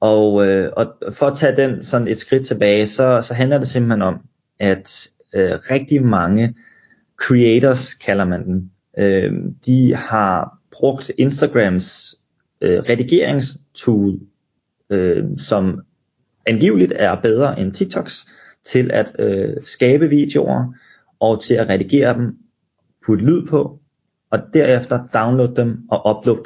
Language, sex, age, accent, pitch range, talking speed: Danish, male, 30-49, native, 105-135 Hz, 130 wpm